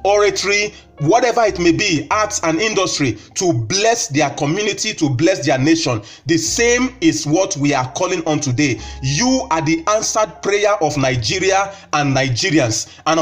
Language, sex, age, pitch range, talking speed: English, male, 30-49, 145-200 Hz, 160 wpm